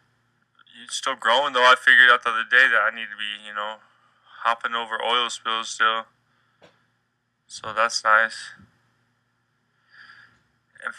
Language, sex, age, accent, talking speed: English, male, 20-39, American, 135 wpm